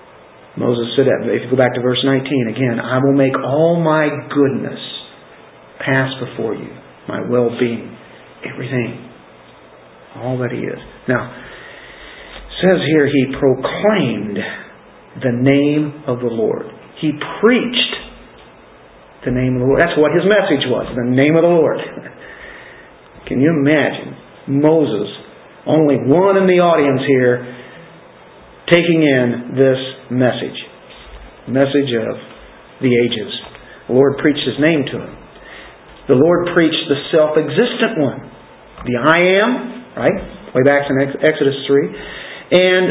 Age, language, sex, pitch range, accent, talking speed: 50-69, English, male, 130-175 Hz, American, 135 wpm